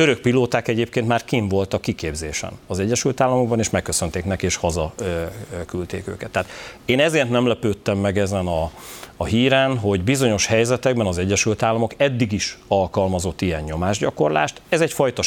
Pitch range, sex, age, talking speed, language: 90-115 Hz, male, 40-59, 160 wpm, Hungarian